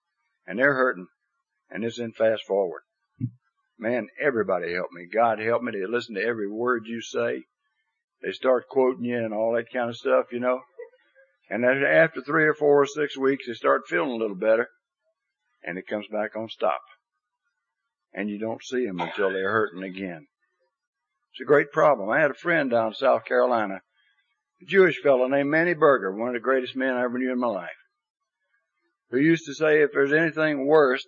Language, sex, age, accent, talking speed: English, male, 60-79, American, 195 wpm